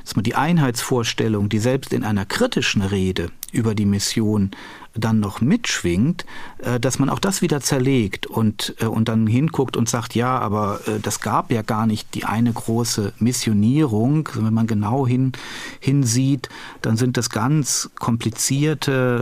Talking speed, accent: 155 wpm, German